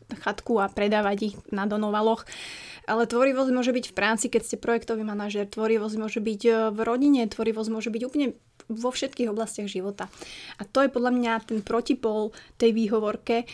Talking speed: 170 wpm